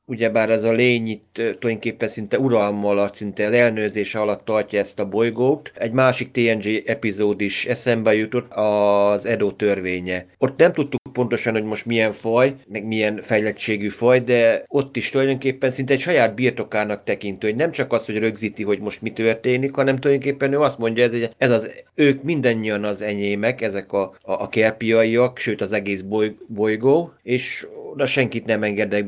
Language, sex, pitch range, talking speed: Hungarian, male, 105-130 Hz, 175 wpm